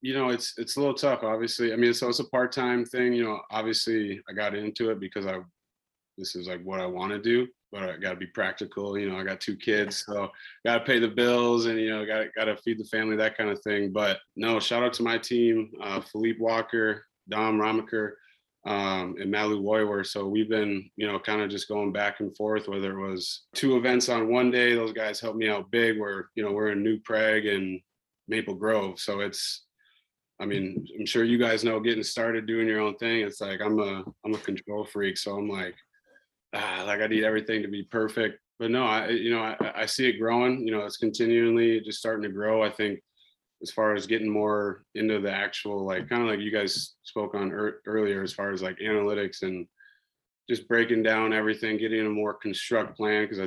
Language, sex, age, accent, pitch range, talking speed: English, male, 20-39, American, 100-115 Hz, 230 wpm